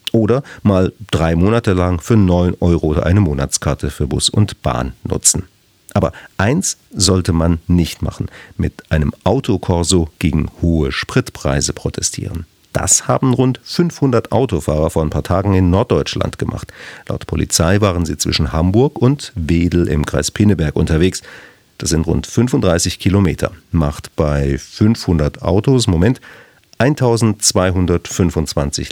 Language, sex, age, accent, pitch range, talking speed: German, male, 50-69, German, 80-110 Hz, 135 wpm